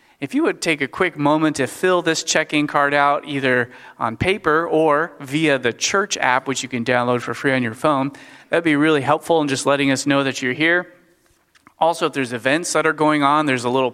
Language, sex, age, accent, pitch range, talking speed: English, male, 30-49, American, 130-155 Hz, 230 wpm